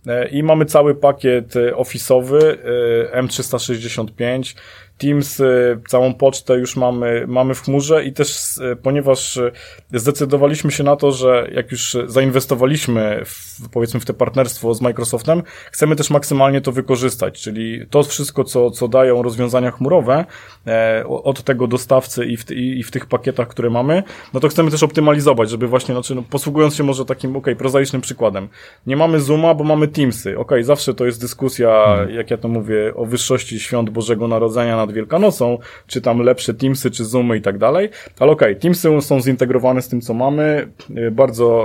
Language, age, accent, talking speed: Polish, 20-39, native, 165 wpm